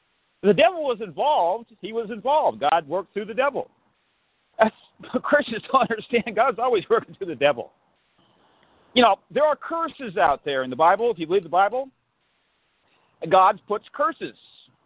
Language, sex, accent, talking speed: English, male, American, 160 wpm